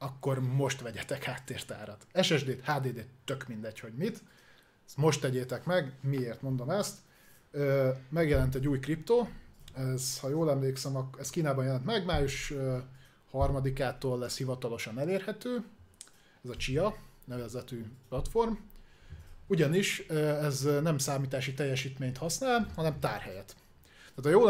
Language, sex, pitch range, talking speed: Hungarian, male, 130-155 Hz, 125 wpm